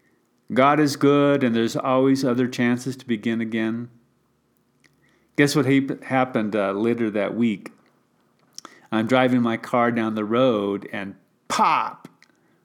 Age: 40-59